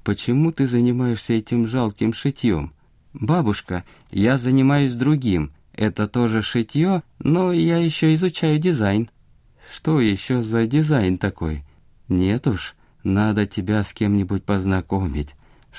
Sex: male